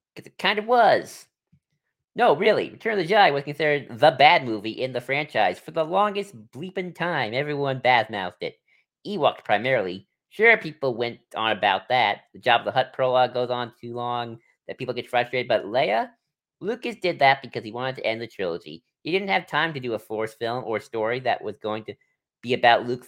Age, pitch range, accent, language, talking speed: 40-59, 120-170 Hz, American, English, 205 wpm